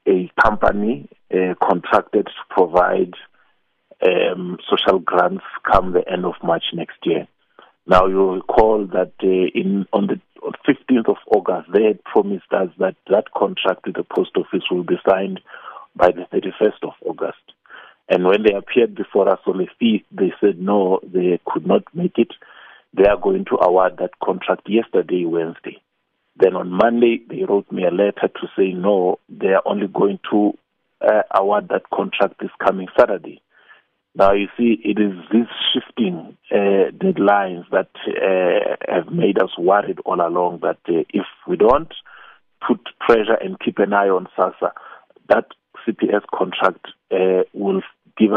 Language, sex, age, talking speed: English, male, 50-69, 165 wpm